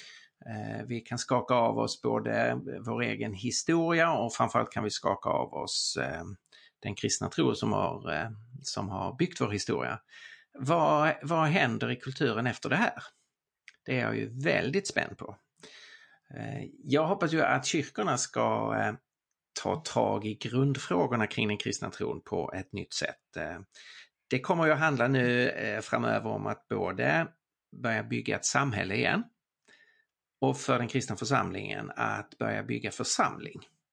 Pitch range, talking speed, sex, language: 115-150 Hz, 145 wpm, male, Swedish